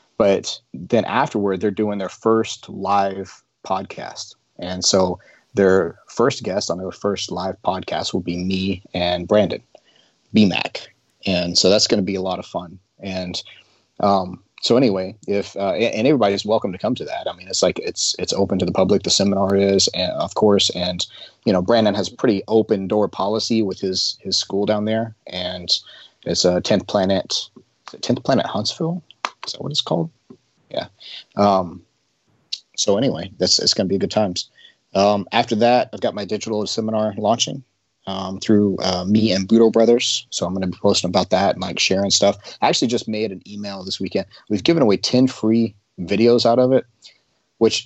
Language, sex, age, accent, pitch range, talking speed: English, male, 30-49, American, 95-110 Hz, 190 wpm